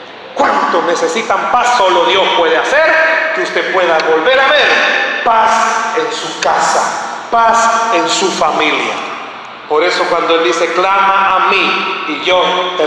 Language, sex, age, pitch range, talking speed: Spanish, male, 40-59, 180-255 Hz, 150 wpm